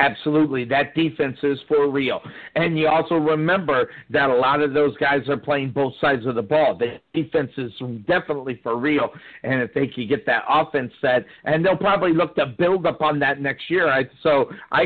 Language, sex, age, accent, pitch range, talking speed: English, male, 50-69, American, 145-185 Hz, 200 wpm